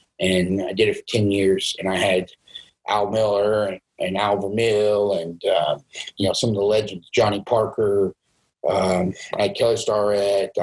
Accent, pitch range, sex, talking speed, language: American, 100-130 Hz, male, 180 wpm, English